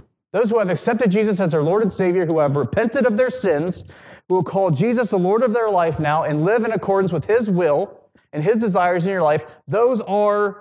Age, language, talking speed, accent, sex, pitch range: 30-49, English, 230 wpm, American, male, 155-220 Hz